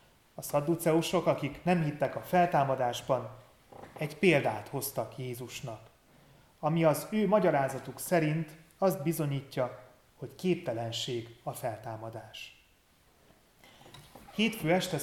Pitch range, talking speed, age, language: 125-155 Hz, 95 wpm, 30-49, Hungarian